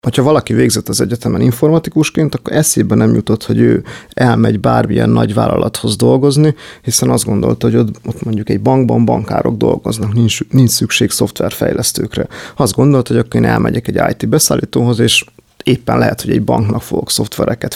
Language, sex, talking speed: Hungarian, male, 160 wpm